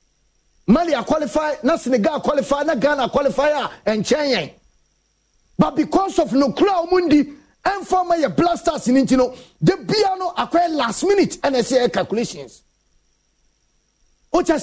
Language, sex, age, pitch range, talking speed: English, male, 40-59, 230-310 Hz, 125 wpm